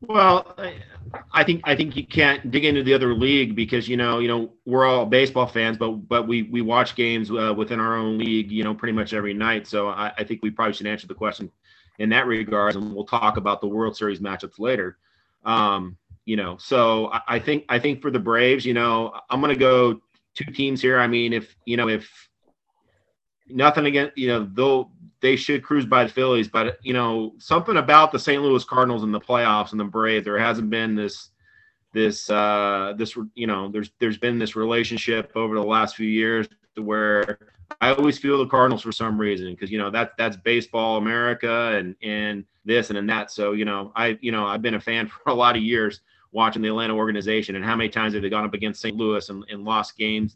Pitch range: 105-120 Hz